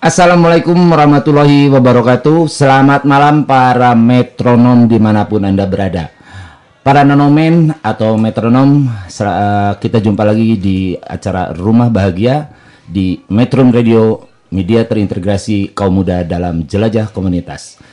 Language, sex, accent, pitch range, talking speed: Indonesian, male, native, 110-140 Hz, 105 wpm